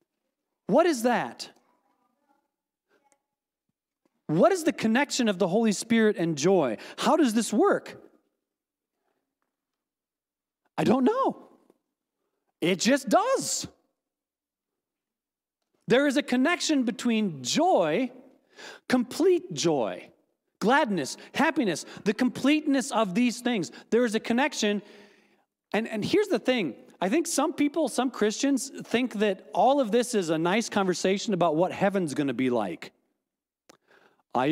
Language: English